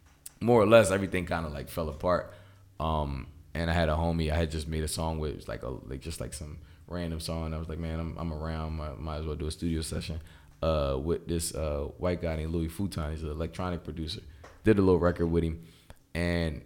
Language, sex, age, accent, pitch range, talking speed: English, male, 20-39, American, 80-95 Hz, 245 wpm